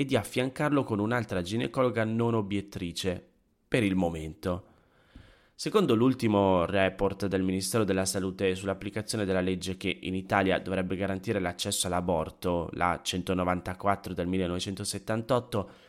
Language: Italian